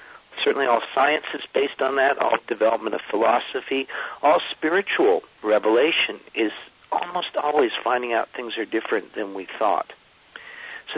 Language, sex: English, male